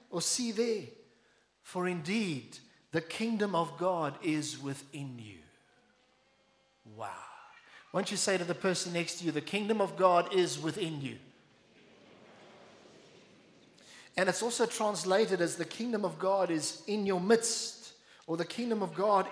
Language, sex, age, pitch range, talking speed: English, male, 50-69, 165-220 Hz, 150 wpm